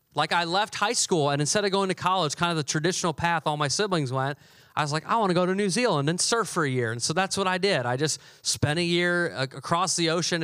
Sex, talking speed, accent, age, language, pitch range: male, 280 wpm, American, 30-49, English, 140-180 Hz